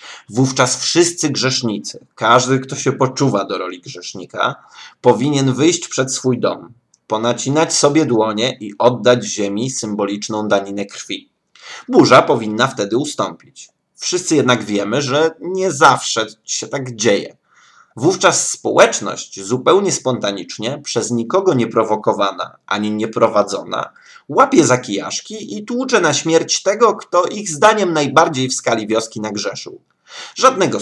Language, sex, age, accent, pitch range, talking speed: Polish, male, 20-39, native, 110-165 Hz, 125 wpm